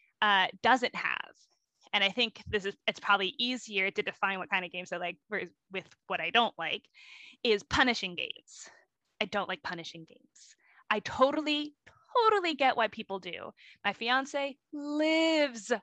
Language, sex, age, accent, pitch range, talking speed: English, female, 10-29, American, 200-280 Hz, 165 wpm